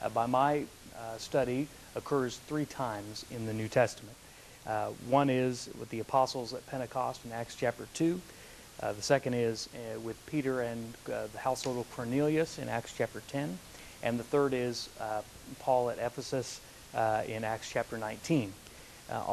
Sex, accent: male, American